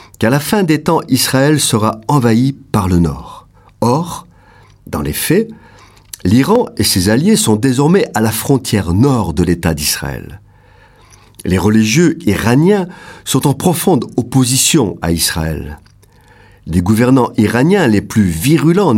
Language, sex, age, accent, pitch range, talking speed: French, male, 50-69, French, 95-145 Hz, 135 wpm